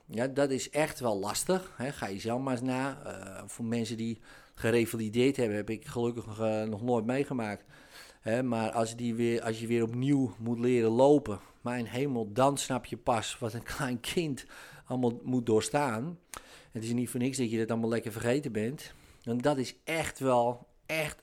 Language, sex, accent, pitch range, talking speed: Dutch, male, Dutch, 115-150 Hz, 190 wpm